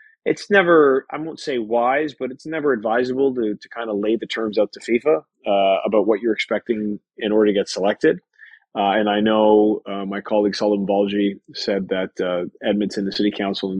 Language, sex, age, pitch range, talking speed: English, male, 30-49, 100-130 Hz, 200 wpm